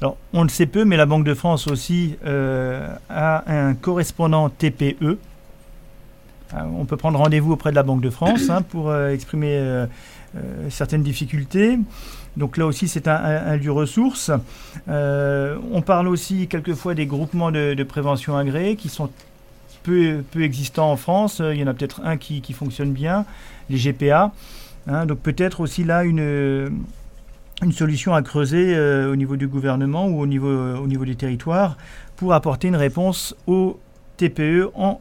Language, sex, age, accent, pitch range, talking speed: French, male, 40-59, French, 140-175 Hz, 170 wpm